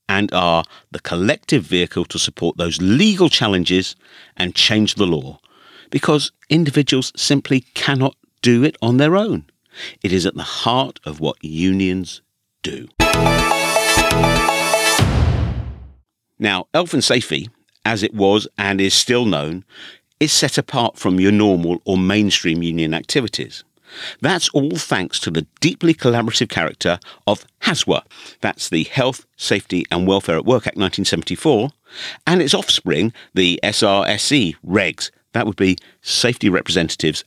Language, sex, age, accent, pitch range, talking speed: English, male, 50-69, British, 85-125 Hz, 135 wpm